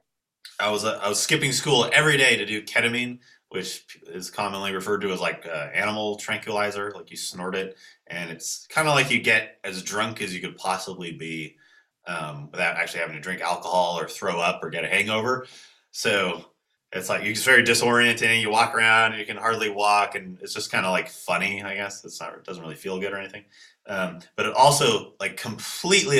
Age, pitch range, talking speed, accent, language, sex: 30-49, 95-120 Hz, 210 wpm, American, English, male